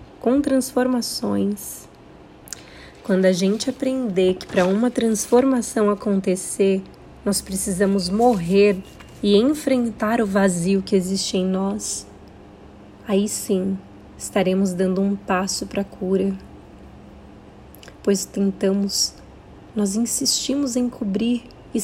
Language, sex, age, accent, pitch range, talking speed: Portuguese, female, 20-39, Brazilian, 195-220 Hz, 105 wpm